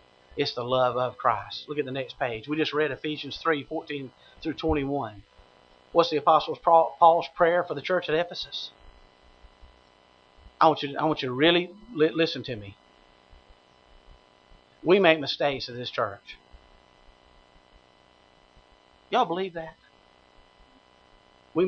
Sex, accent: male, American